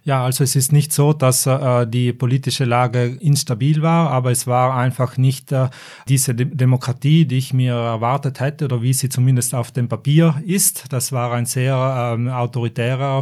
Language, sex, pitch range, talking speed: German, male, 120-135 Hz, 185 wpm